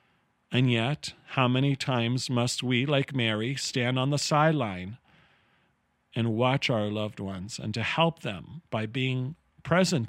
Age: 40-59